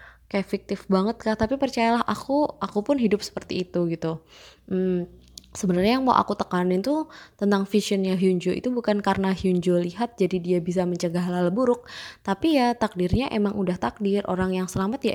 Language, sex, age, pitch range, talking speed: Indonesian, female, 20-39, 180-210 Hz, 175 wpm